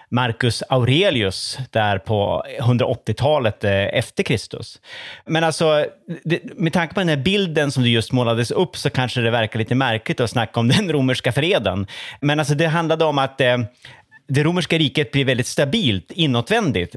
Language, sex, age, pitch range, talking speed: Swedish, male, 30-49, 115-155 Hz, 165 wpm